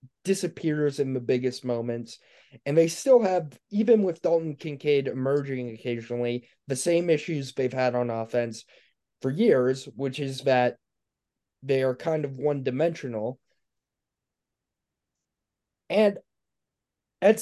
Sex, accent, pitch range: male, American, 130-160 Hz